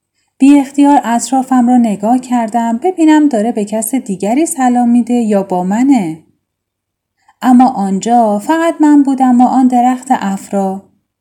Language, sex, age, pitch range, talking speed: Persian, female, 10-29, 195-275 Hz, 135 wpm